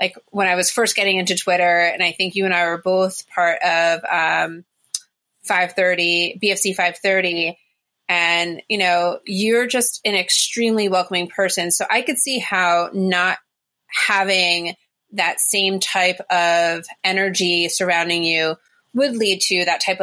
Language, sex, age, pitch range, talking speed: English, female, 30-49, 170-195 Hz, 155 wpm